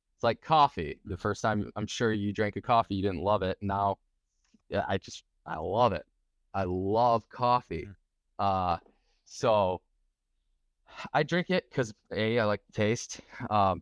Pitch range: 90-110 Hz